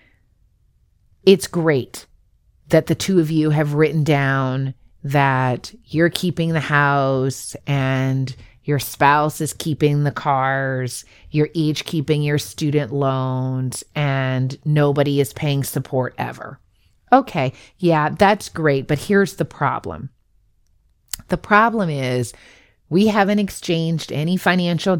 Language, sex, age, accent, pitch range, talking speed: English, female, 30-49, American, 135-165 Hz, 120 wpm